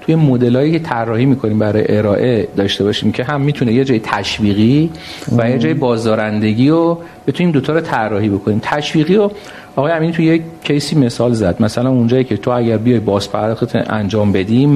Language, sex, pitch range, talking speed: Persian, male, 115-160 Hz, 170 wpm